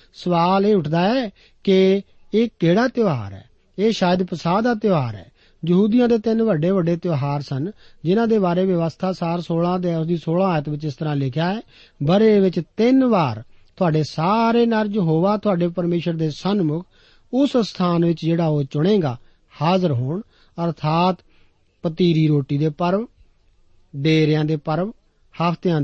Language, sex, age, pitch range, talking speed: Punjabi, male, 50-69, 150-195 Hz, 120 wpm